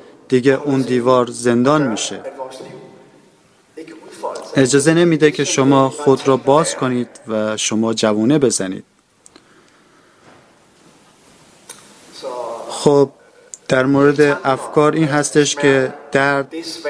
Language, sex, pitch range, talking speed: Persian, male, 130-155 Hz, 90 wpm